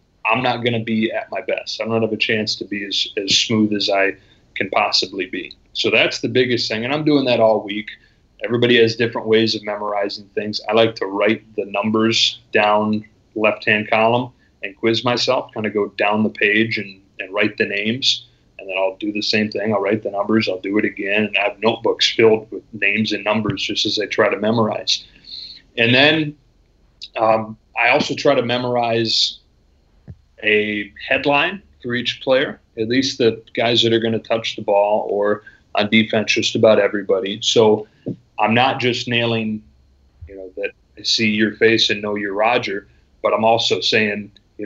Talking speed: 195 wpm